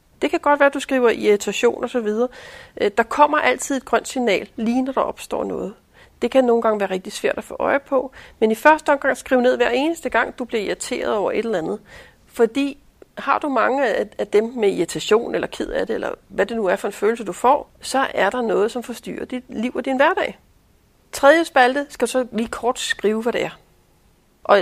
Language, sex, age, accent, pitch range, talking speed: Danish, female, 40-59, native, 215-265 Hz, 225 wpm